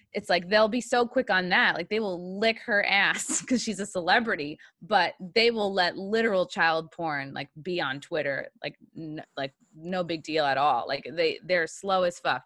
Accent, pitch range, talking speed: American, 160-210 Hz, 200 wpm